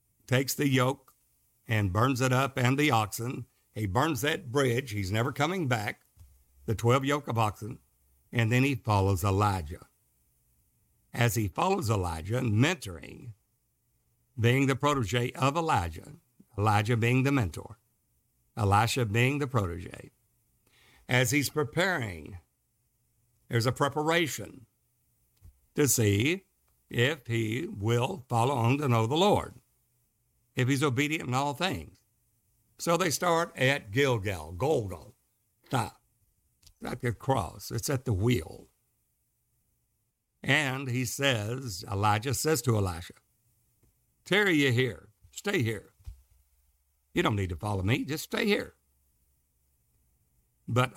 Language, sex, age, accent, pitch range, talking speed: English, male, 60-79, American, 105-130 Hz, 120 wpm